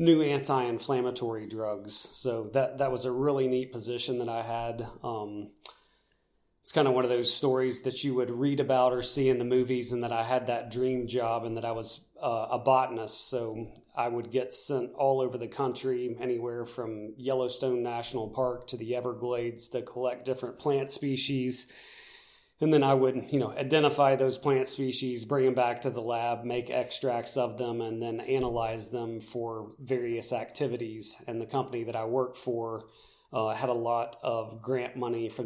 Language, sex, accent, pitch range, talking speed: English, male, American, 115-130 Hz, 185 wpm